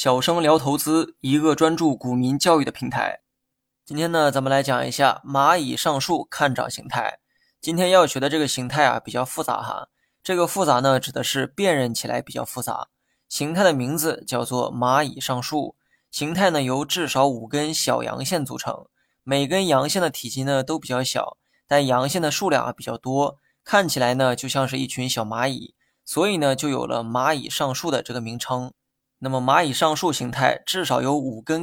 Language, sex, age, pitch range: Chinese, male, 20-39, 130-160 Hz